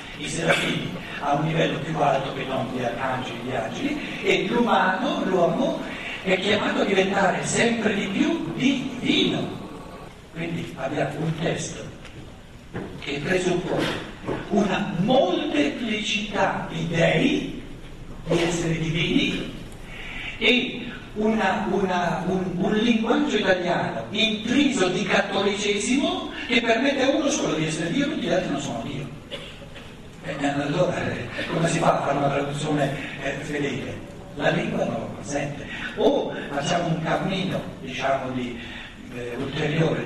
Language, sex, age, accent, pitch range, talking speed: Italian, male, 60-79, native, 145-210 Hz, 130 wpm